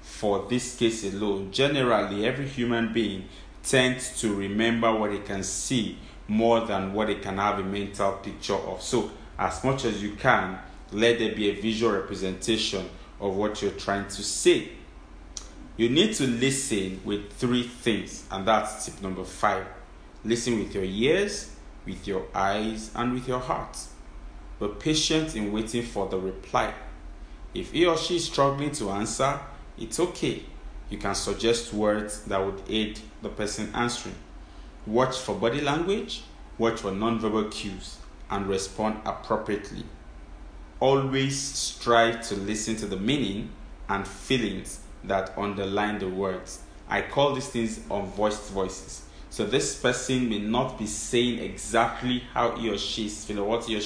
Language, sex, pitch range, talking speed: English, male, 95-120 Hz, 155 wpm